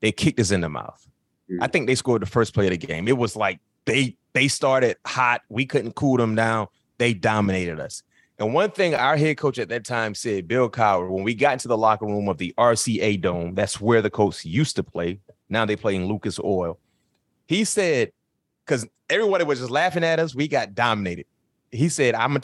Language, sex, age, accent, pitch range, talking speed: English, male, 30-49, American, 110-175 Hz, 220 wpm